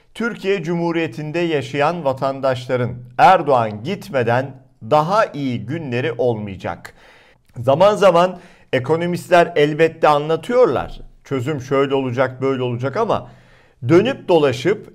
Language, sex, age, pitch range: Turkish, male, 50-69, 120-175 Hz